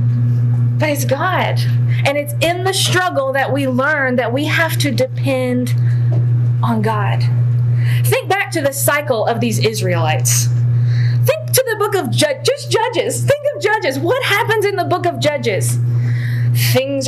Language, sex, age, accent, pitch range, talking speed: English, female, 30-49, American, 120-135 Hz, 160 wpm